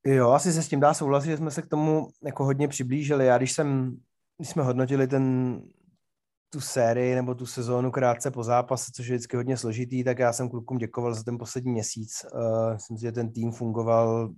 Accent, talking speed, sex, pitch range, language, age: native, 195 wpm, male, 115-125 Hz, Czech, 30-49